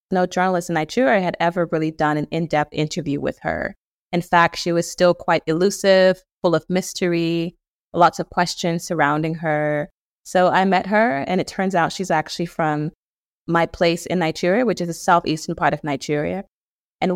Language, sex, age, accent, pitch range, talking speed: English, female, 20-39, American, 155-185 Hz, 180 wpm